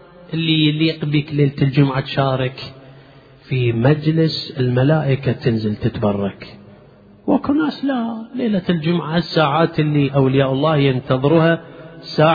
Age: 40-59